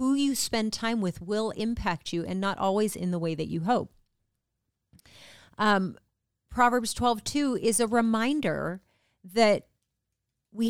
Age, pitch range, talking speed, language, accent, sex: 40-59, 175-215 Hz, 140 wpm, English, American, female